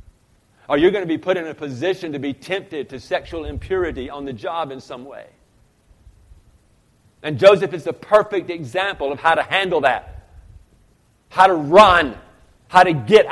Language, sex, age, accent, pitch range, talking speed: English, male, 50-69, American, 155-225 Hz, 170 wpm